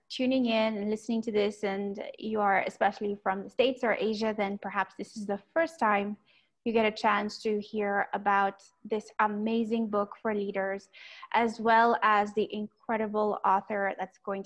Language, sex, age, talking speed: English, female, 20-39, 175 wpm